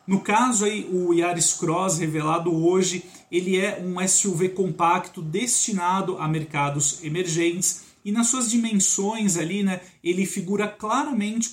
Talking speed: 135 wpm